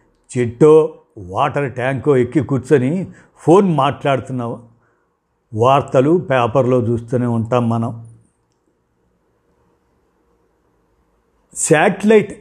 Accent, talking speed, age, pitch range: native, 65 wpm, 50-69, 125-160 Hz